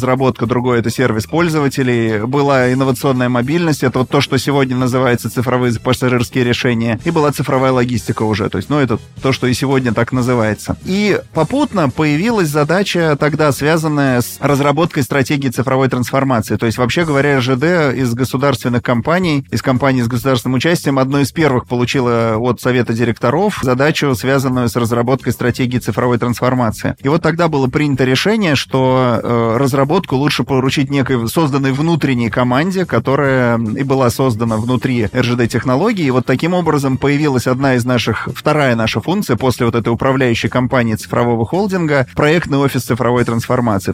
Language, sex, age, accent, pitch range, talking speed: Russian, male, 20-39, native, 125-140 Hz, 155 wpm